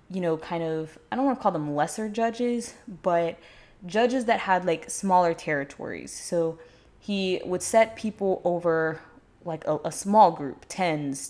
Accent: American